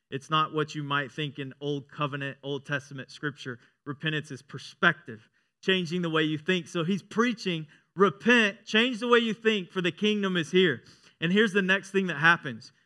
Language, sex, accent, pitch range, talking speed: English, male, American, 155-195 Hz, 190 wpm